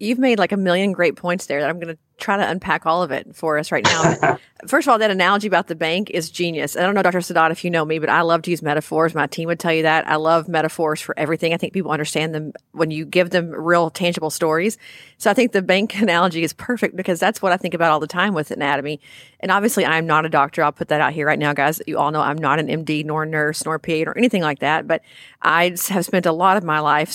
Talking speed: 285 wpm